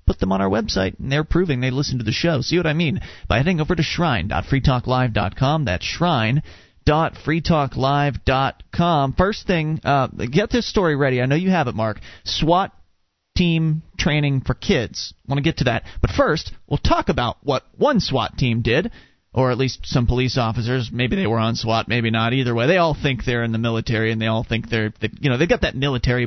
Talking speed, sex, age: 210 wpm, male, 30-49